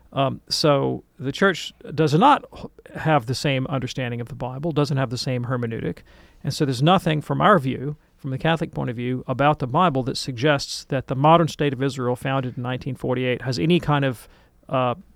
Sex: male